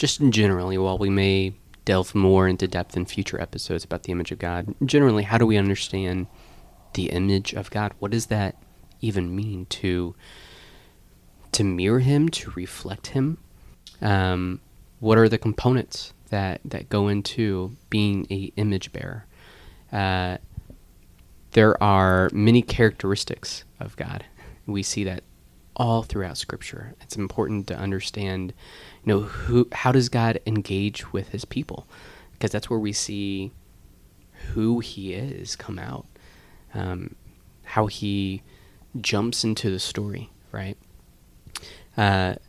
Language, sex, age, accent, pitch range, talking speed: English, male, 20-39, American, 95-110 Hz, 135 wpm